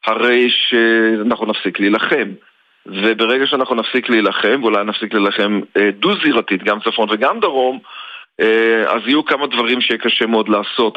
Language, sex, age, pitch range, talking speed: Hebrew, male, 40-59, 110-130 Hz, 130 wpm